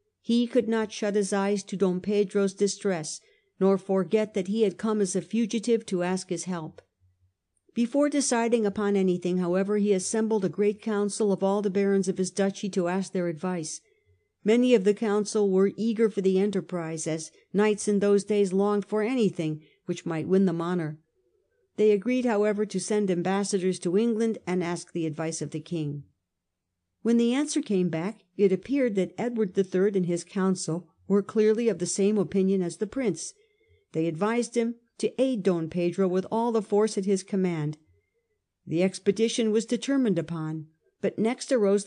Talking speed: 180 wpm